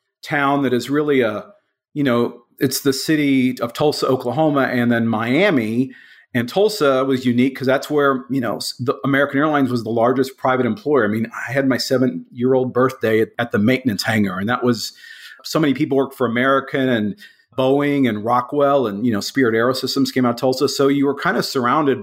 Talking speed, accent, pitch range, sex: 205 wpm, American, 120-145 Hz, male